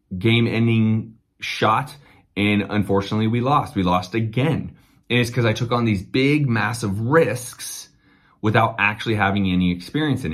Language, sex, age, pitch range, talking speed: English, male, 30-49, 95-120 Hz, 150 wpm